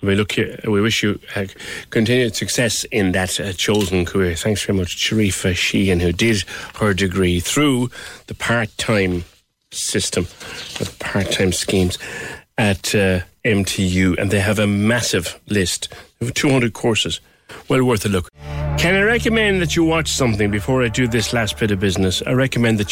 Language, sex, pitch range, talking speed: English, male, 95-110 Hz, 170 wpm